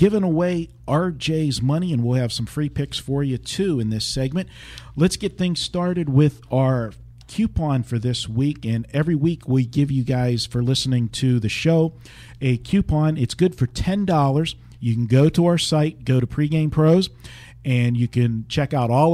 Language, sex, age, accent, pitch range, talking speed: English, male, 50-69, American, 120-150 Hz, 190 wpm